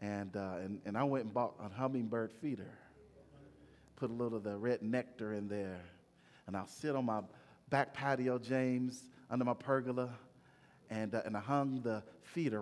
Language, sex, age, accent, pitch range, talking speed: English, male, 40-59, American, 115-145 Hz, 180 wpm